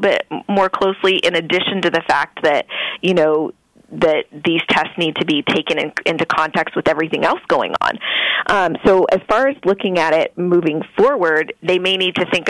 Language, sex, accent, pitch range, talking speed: English, female, American, 160-190 Hz, 190 wpm